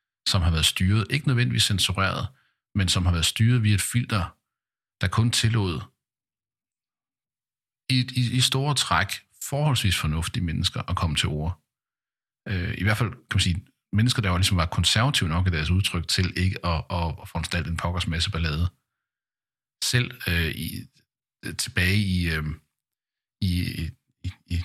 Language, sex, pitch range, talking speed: Danish, male, 85-110 Hz, 155 wpm